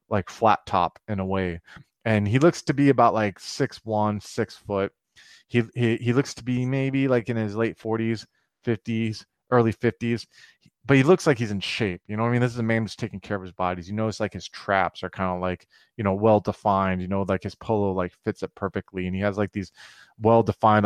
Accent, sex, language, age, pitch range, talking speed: American, male, English, 30-49, 95-115 Hz, 235 wpm